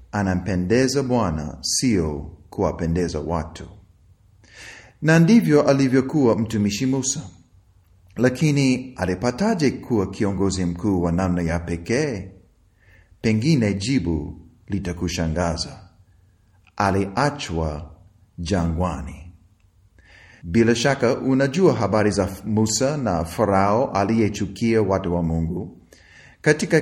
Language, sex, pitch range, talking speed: Swahili, male, 90-135 Hz, 85 wpm